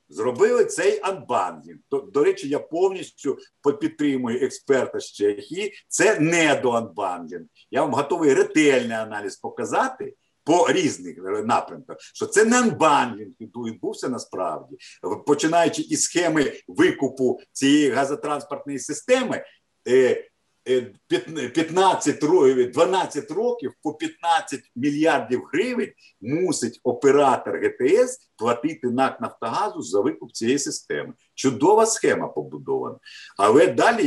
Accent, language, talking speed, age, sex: native, Ukrainian, 105 wpm, 50-69, male